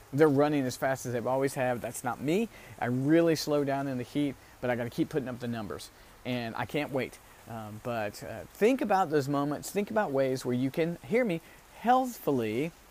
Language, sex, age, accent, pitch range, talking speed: English, male, 40-59, American, 125-165 Hz, 220 wpm